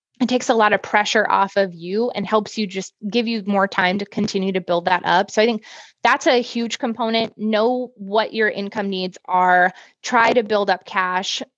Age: 20-39